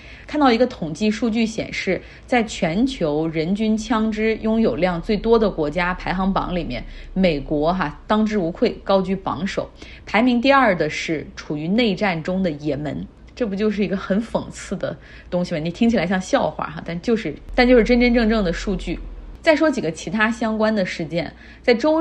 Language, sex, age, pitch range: Chinese, female, 30-49, 175-220 Hz